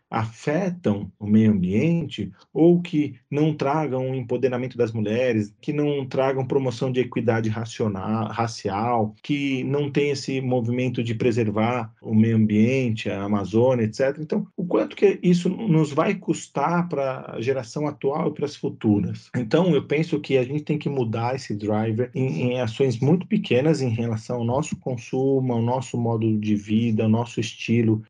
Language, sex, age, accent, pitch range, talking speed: Portuguese, male, 40-59, Brazilian, 120-160 Hz, 165 wpm